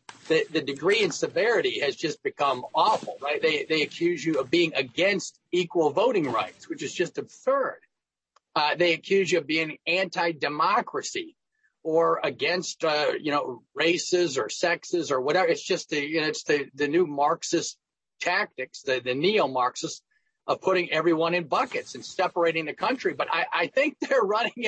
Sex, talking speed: male, 170 wpm